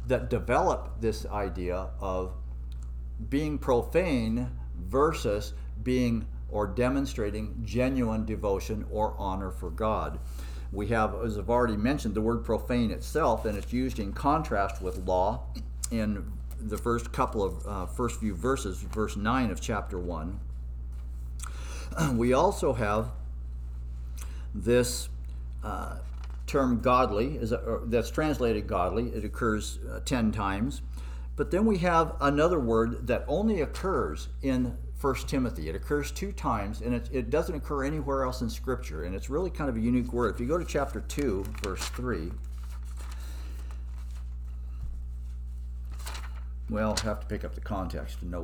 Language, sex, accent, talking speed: English, male, American, 145 wpm